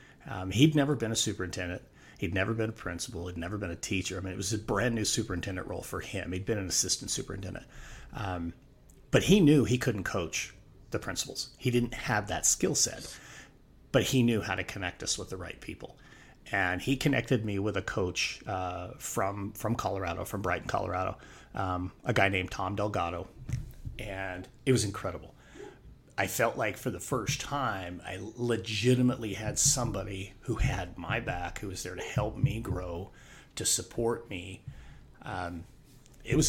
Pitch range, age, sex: 95-125 Hz, 30-49, male